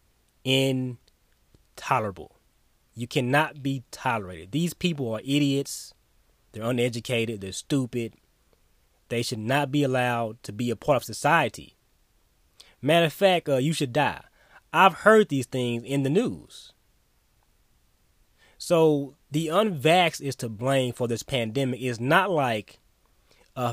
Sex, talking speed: male, 130 wpm